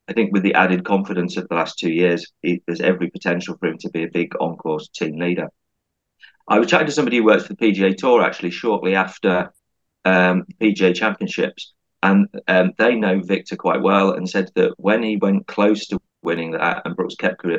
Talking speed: 210 wpm